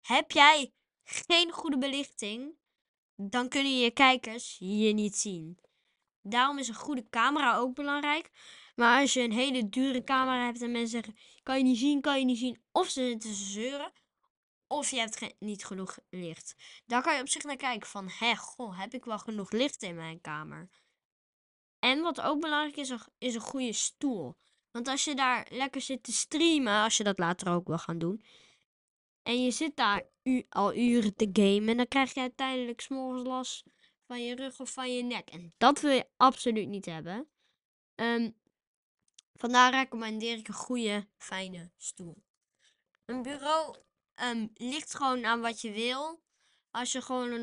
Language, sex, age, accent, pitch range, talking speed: Dutch, female, 20-39, Dutch, 210-260 Hz, 180 wpm